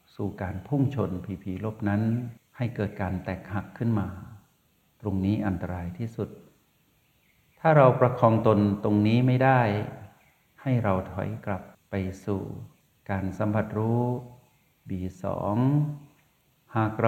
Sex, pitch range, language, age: male, 95-120 Hz, Thai, 60-79